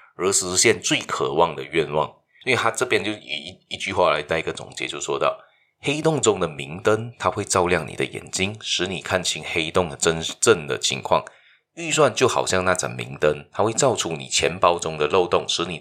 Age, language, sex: 20-39, Chinese, male